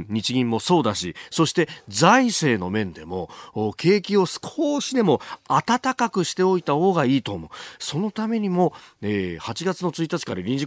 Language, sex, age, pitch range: Japanese, male, 40-59, 110-170 Hz